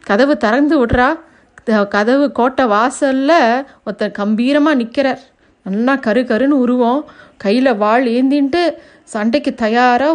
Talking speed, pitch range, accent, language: 105 wpm, 235-290 Hz, native, Tamil